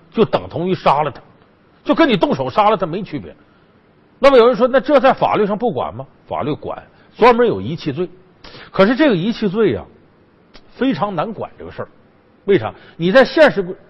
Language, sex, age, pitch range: Chinese, male, 50-69, 175-260 Hz